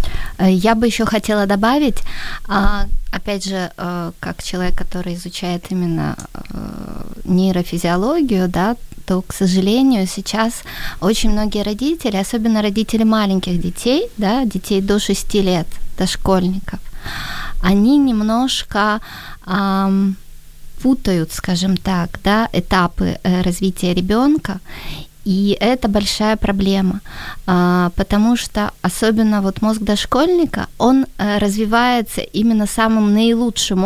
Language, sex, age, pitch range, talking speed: Ukrainian, female, 20-39, 180-215 Hz, 100 wpm